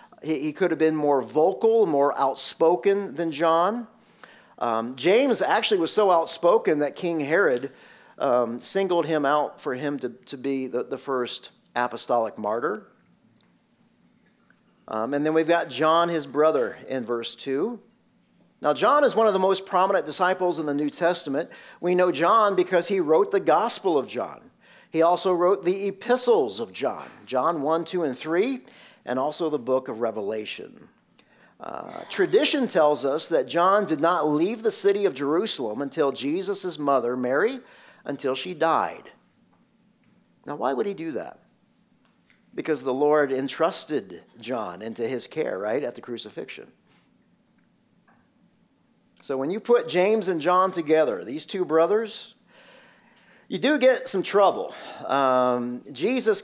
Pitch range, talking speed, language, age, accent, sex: 145-210 Hz, 150 wpm, English, 50-69, American, male